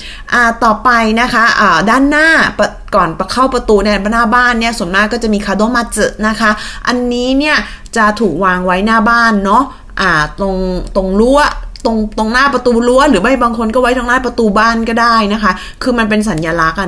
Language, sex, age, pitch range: Thai, female, 20-39, 195-245 Hz